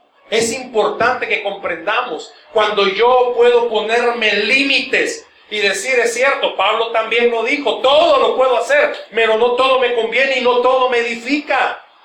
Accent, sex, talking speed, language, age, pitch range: Mexican, male, 155 wpm, Spanish, 40-59, 185-280 Hz